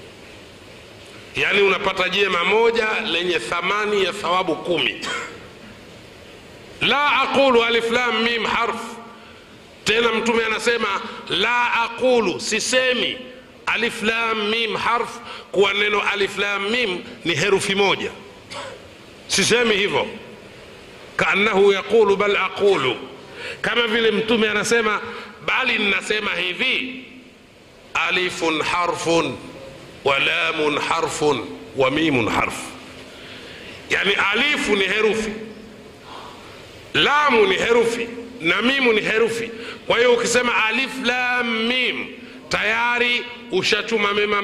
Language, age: Swahili, 60-79